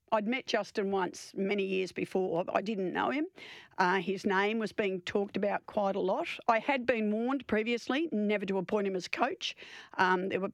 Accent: Australian